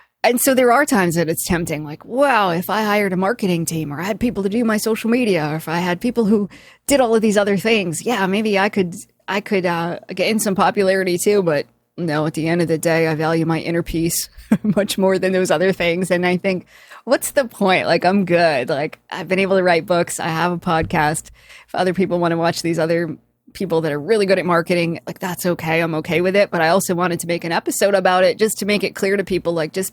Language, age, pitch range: English, 20-39, 160-195 Hz